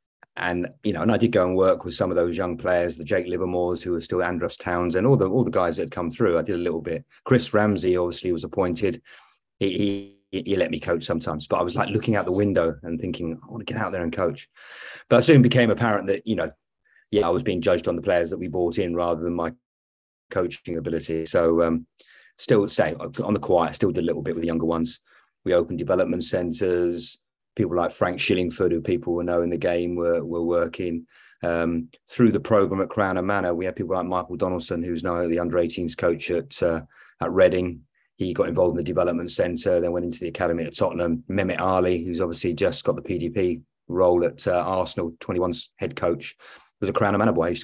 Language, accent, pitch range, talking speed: English, British, 85-95 Hz, 235 wpm